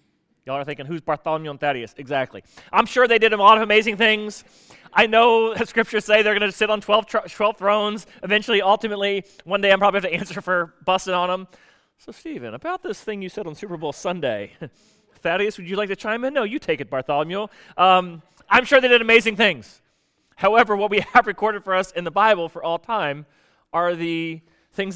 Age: 30-49